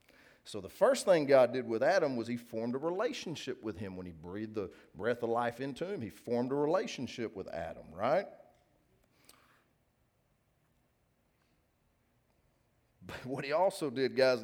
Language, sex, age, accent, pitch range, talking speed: English, male, 40-59, American, 115-145 Hz, 155 wpm